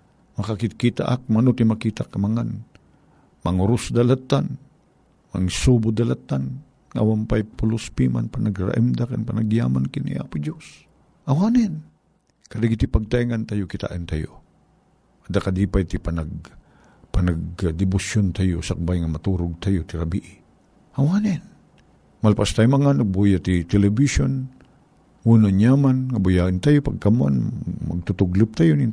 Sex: male